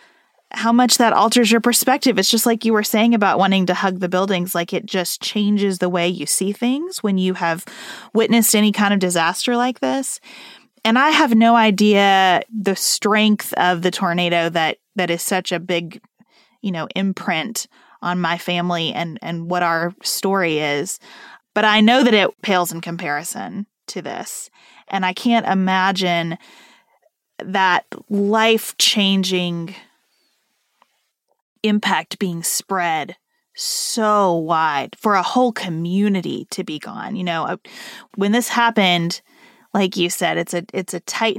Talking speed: 155 wpm